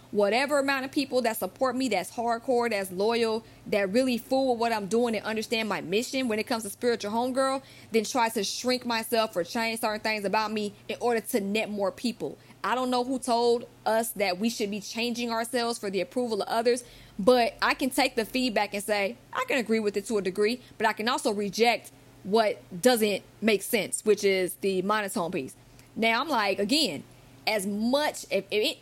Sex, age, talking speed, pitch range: female, 20-39, 210 wpm, 195-250 Hz